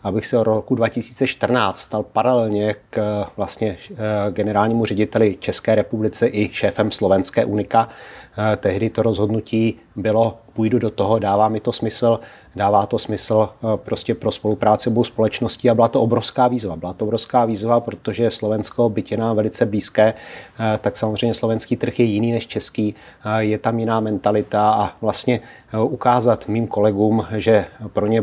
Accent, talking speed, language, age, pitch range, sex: native, 150 wpm, Czech, 30-49, 105-120 Hz, male